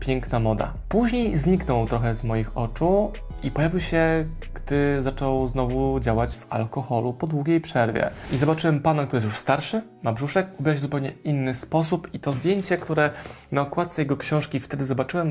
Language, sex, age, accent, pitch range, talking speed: Polish, male, 20-39, native, 125-160 Hz, 170 wpm